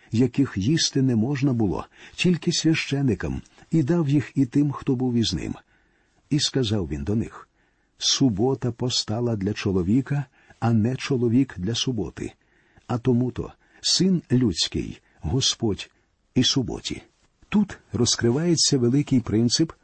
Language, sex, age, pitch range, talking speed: Ukrainian, male, 50-69, 115-145 Hz, 125 wpm